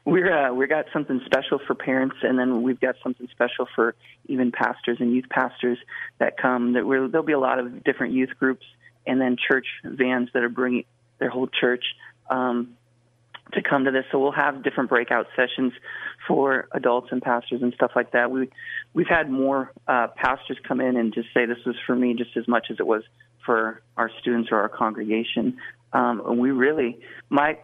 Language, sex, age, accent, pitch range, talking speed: English, male, 30-49, American, 120-135 Hz, 200 wpm